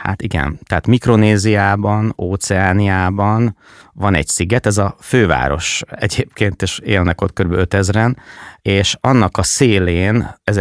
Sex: male